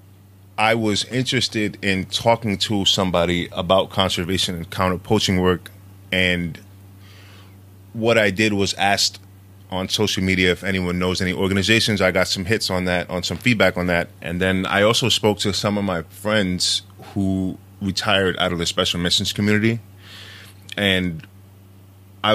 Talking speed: 155 wpm